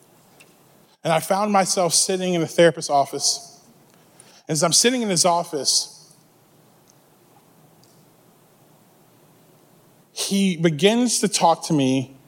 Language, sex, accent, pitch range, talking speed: English, male, American, 170-200 Hz, 110 wpm